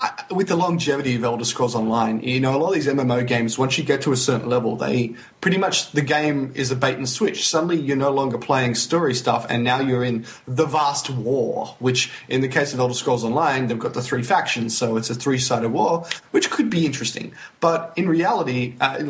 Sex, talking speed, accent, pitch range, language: male, 230 wpm, Australian, 120-150 Hz, English